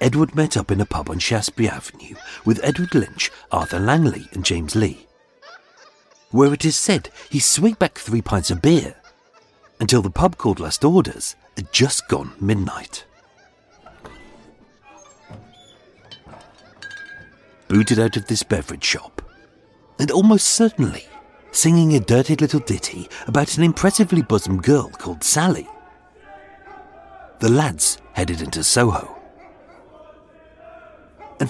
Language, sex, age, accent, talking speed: English, male, 50-69, British, 125 wpm